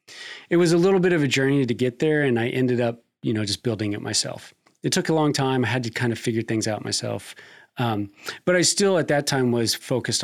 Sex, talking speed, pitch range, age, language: male, 260 wpm, 110-140 Hz, 30-49, English